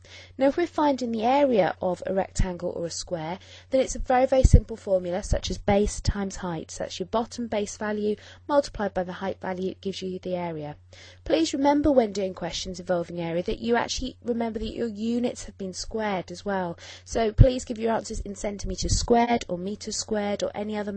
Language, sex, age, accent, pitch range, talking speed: English, female, 20-39, British, 180-235 Hz, 210 wpm